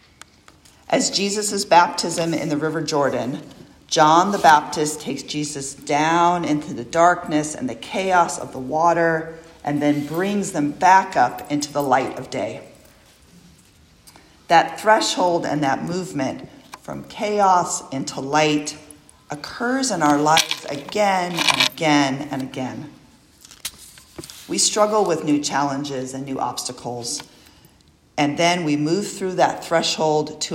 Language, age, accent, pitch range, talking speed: English, 40-59, American, 145-175 Hz, 130 wpm